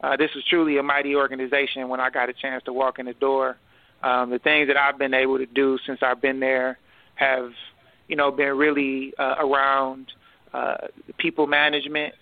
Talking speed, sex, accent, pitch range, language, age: 195 wpm, male, American, 130-145 Hz, English, 30-49